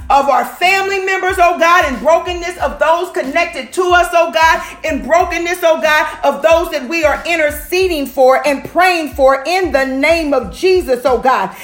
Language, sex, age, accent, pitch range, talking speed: English, female, 40-59, American, 275-350 Hz, 185 wpm